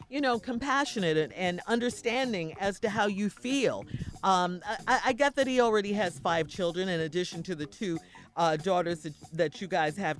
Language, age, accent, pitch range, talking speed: English, 40-59, American, 180-260 Hz, 180 wpm